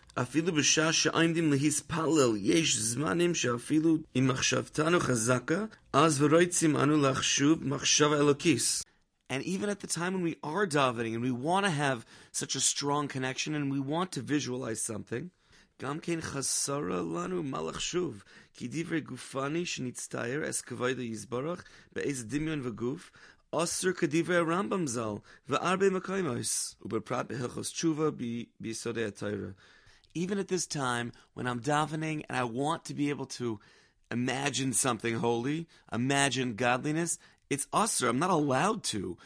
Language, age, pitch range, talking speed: English, 30-49, 125-160 Hz, 105 wpm